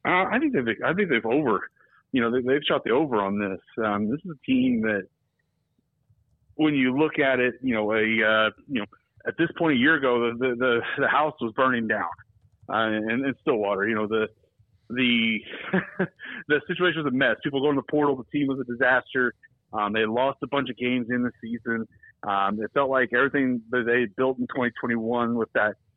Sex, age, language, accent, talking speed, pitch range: male, 30-49, English, American, 215 wpm, 115-155 Hz